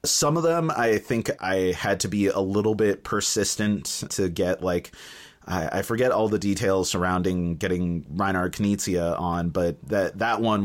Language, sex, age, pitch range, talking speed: English, male, 30-49, 90-125 Hz, 175 wpm